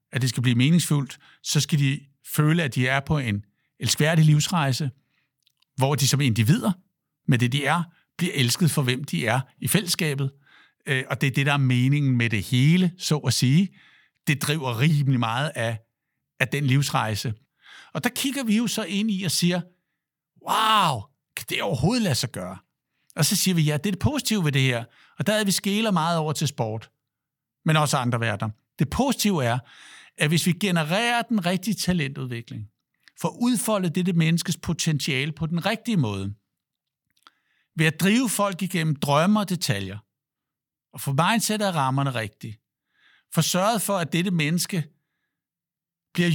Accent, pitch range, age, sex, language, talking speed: native, 130-175 Hz, 60-79, male, Danish, 175 wpm